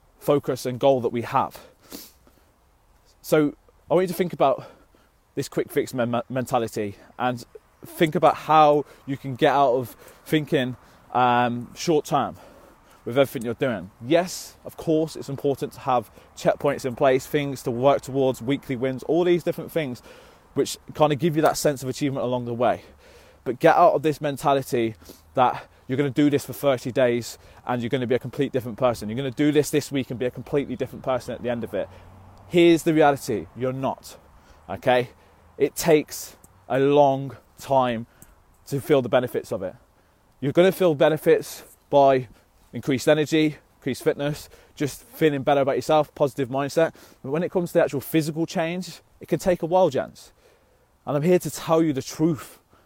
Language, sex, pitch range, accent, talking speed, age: English, male, 120-155 Hz, British, 185 wpm, 20-39